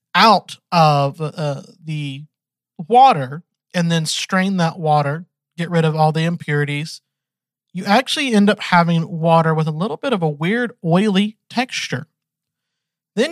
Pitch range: 145-180 Hz